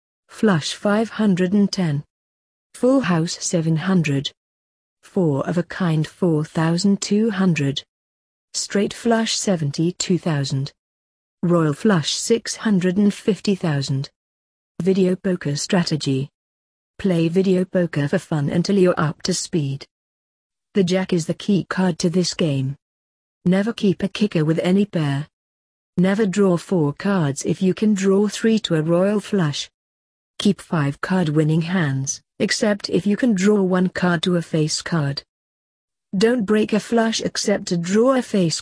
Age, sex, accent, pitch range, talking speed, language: 50-69, female, British, 140-195 Hz, 130 wpm, English